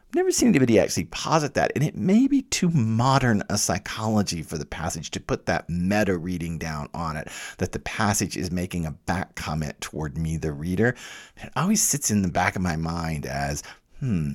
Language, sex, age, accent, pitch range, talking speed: English, male, 50-69, American, 85-110 Hz, 200 wpm